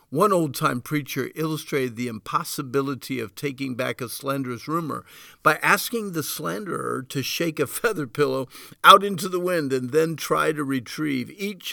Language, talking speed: English, 160 wpm